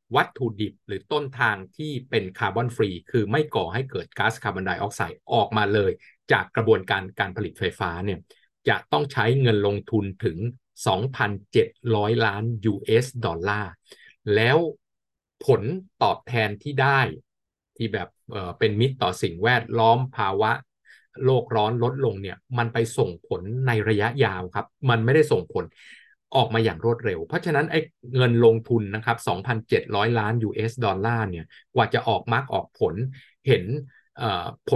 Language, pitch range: Thai, 105-130 Hz